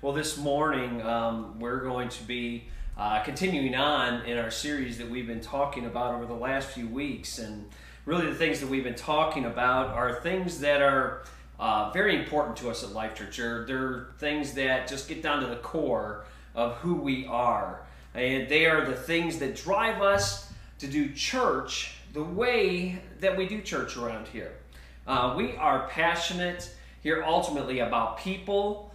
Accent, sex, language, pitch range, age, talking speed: American, male, English, 115-180 Hz, 40-59, 175 wpm